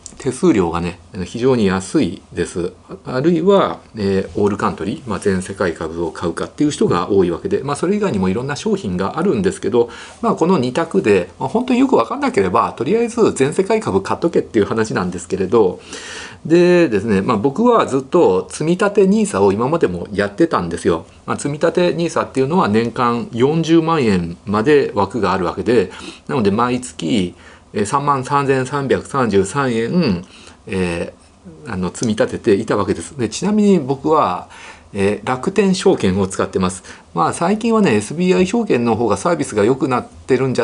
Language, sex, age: Japanese, male, 40-59